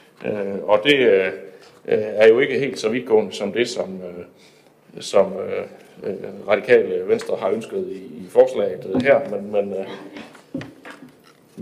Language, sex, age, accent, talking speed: Danish, male, 60-79, native, 135 wpm